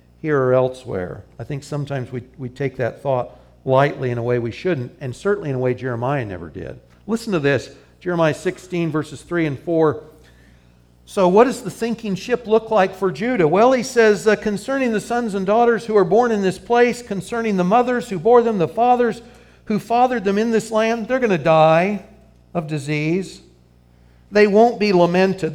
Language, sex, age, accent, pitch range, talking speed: English, male, 60-79, American, 145-200 Hz, 195 wpm